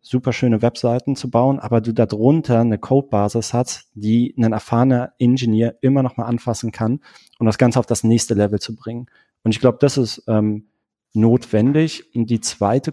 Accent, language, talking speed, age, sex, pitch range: German, German, 185 wpm, 40-59, male, 110-125 Hz